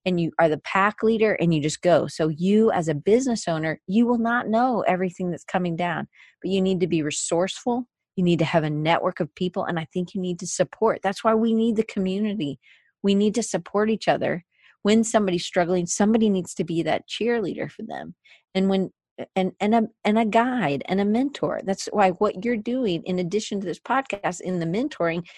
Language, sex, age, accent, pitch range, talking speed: English, female, 40-59, American, 175-230 Hz, 220 wpm